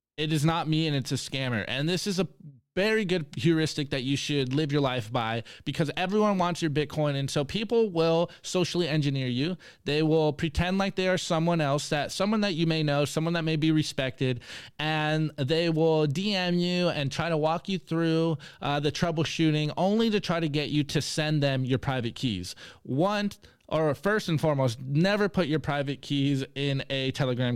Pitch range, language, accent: 135-170 Hz, English, American